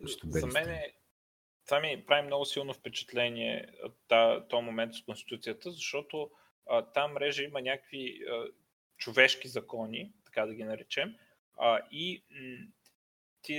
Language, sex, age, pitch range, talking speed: Bulgarian, male, 20-39, 120-150 Hz, 115 wpm